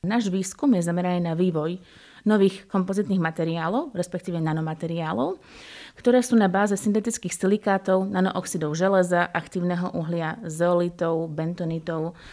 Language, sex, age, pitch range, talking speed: Slovak, female, 20-39, 170-205 Hz, 110 wpm